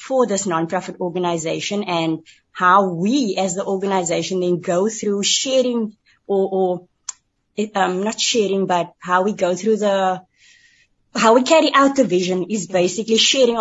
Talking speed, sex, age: 155 wpm, female, 20-39